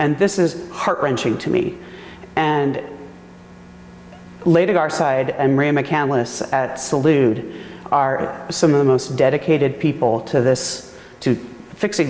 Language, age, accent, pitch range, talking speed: English, 30-49, American, 130-165 Hz, 125 wpm